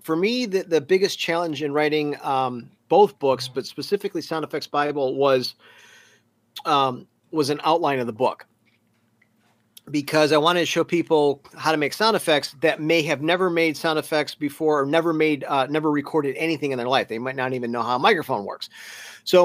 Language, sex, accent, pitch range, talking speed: English, male, American, 130-160 Hz, 195 wpm